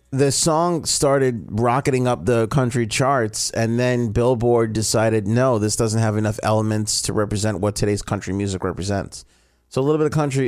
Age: 30-49